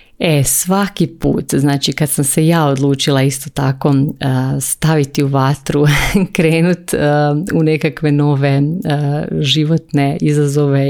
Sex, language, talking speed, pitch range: female, Croatian, 110 wpm, 140-160 Hz